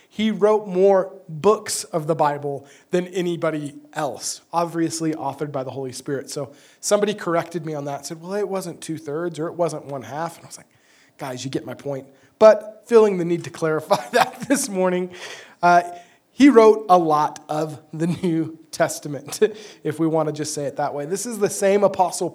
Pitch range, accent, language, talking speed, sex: 155-195 Hz, American, English, 195 wpm, male